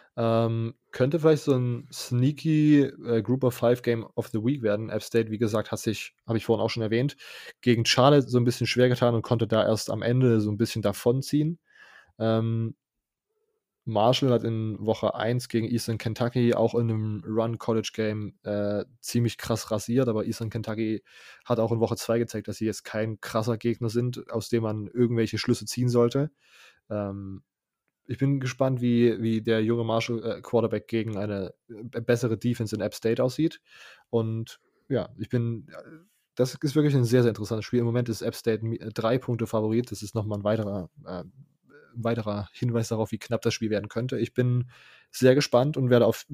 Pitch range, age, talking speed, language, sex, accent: 110-125 Hz, 20-39, 190 wpm, German, male, German